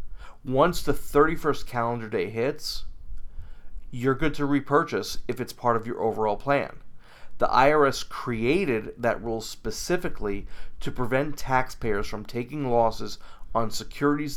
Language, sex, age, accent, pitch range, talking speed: English, male, 40-59, American, 110-135 Hz, 130 wpm